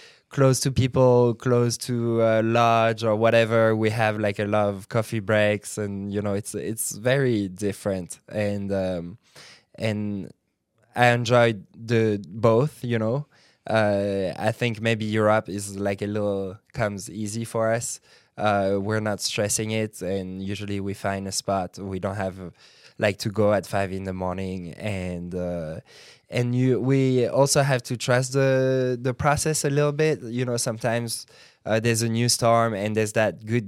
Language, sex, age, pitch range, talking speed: English, male, 20-39, 100-120 Hz, 170 wpm